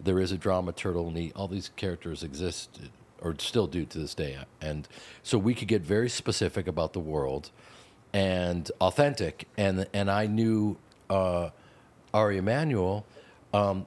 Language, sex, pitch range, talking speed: English, male, 95-115 Hz, 155 wpm